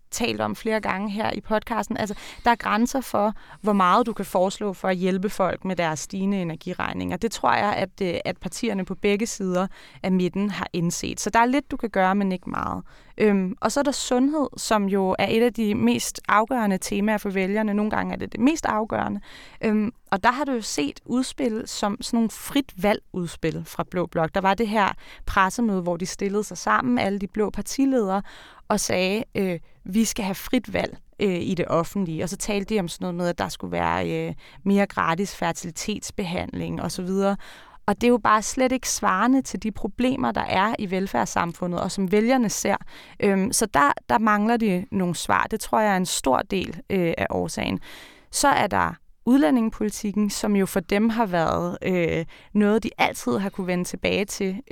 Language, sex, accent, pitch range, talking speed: Danish, female, native, 185-225 Hz, 200 wpm